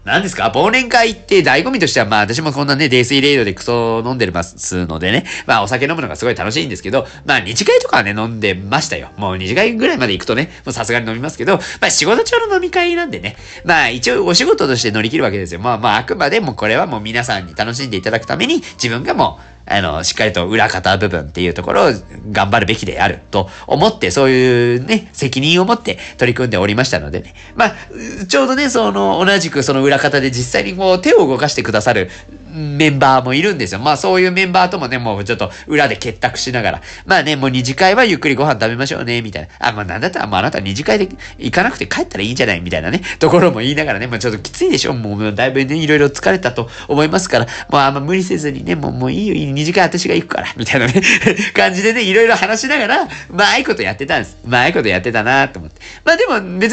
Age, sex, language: 40-59, male, Japanese